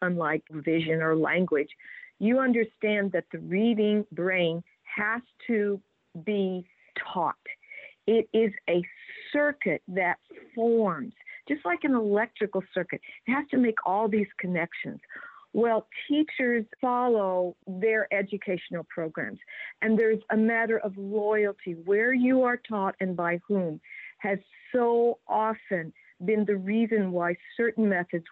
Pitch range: 185-235 Hz